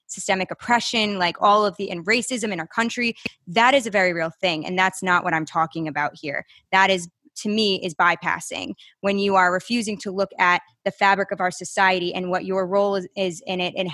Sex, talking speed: female, 225 wpm